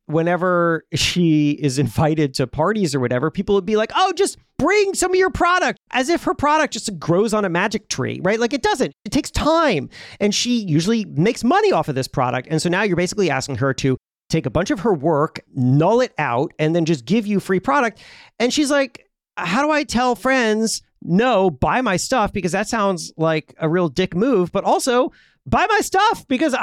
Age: 40-59